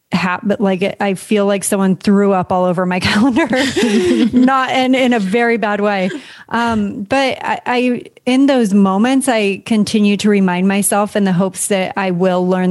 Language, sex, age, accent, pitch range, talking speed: English, female, 30-49, American, 185-225 Hz, 190 wpm